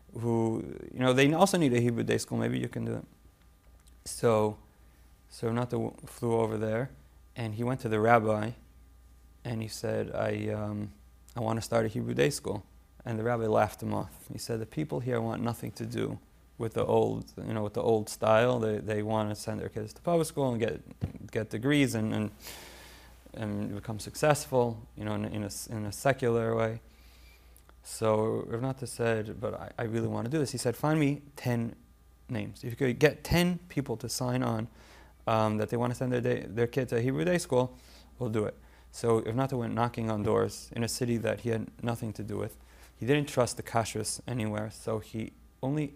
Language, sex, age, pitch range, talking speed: English, male, 30-49, 105-120 Hz, 210 wpm